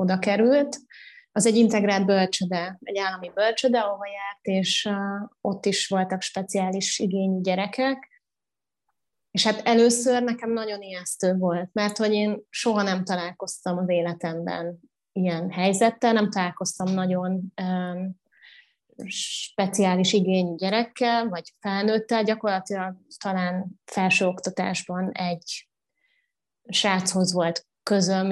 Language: Hungarian